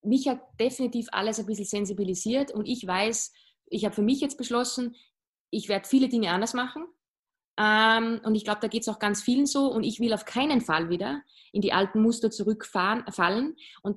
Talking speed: 200 wpm